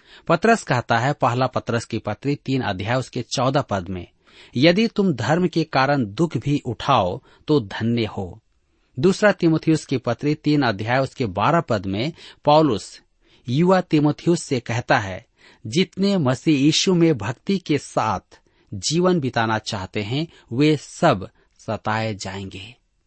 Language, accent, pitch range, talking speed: Hindi, native, 115-160 Hz, 145 wpm